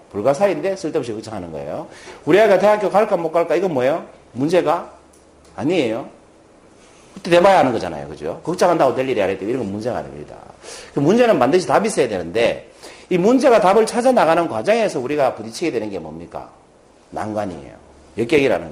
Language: Korean